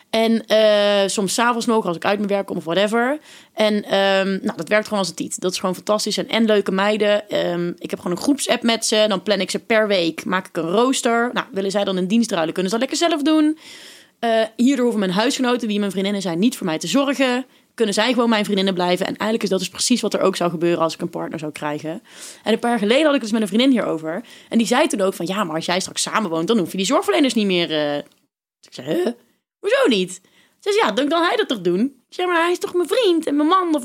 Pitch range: 180-230 Hz